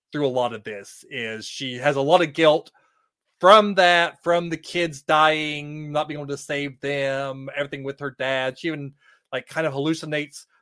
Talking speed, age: 190 wpm, 30-49